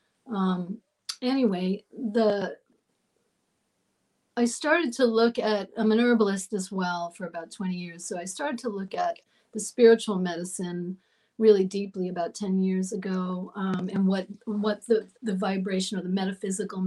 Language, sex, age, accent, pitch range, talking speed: English, female, 40-59, American, 185-225 Hz, 150 wpm